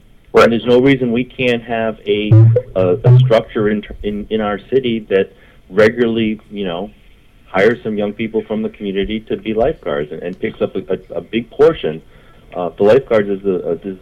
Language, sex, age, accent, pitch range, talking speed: English, male, 40-59, American, 95-115 Hz, 195 wpm